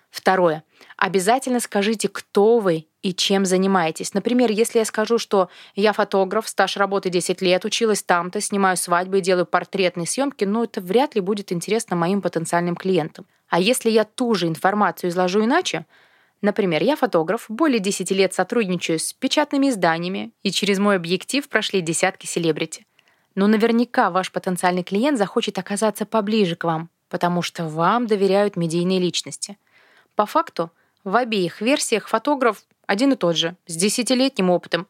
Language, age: Russian, 20-39